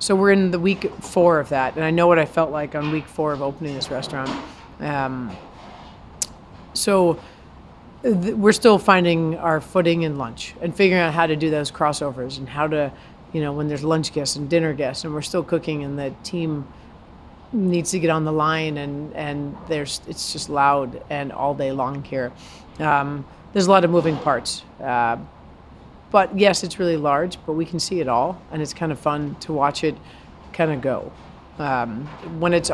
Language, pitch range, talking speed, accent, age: English, 140-175 Hz, 200 wpm, American, 40-59